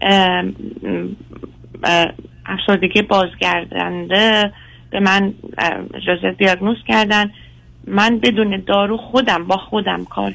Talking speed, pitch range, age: 85 wpm, 175-220 Hz, 30-49